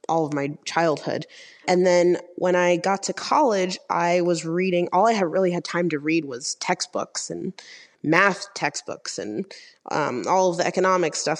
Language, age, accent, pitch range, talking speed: English, 20-39, American, 160-210 Hz, 180 wpm